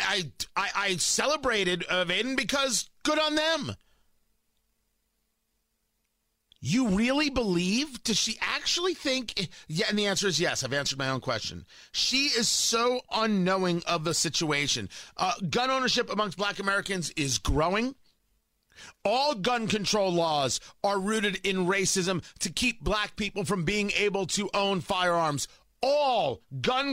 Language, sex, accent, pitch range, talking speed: English, male, American, 175-245 Hz, 140 wpm